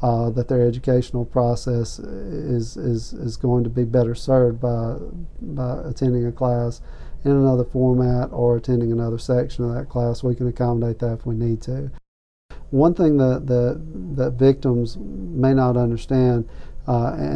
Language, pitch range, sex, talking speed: English, 120-125 Hz, male, 160 wpm